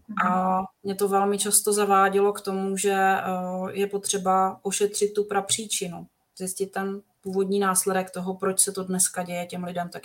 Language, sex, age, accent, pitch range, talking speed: Czech, female, 30-49, native, 185-200 Hz, 160 wpm